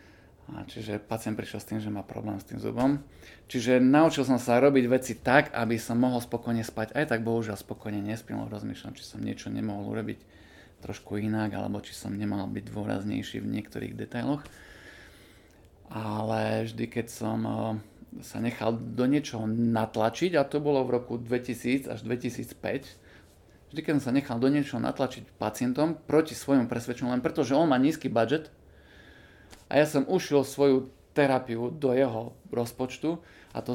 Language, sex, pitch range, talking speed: Slovak, male, 110-135 Hz, 165 wpm